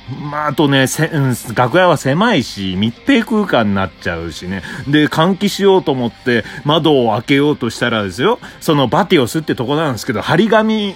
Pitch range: 115-180 Hz